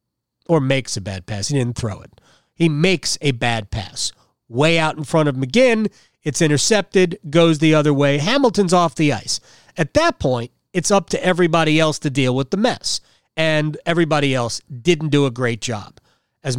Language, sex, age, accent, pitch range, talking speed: English, male, 40-59, American, 130-170 Hz, 190 wpm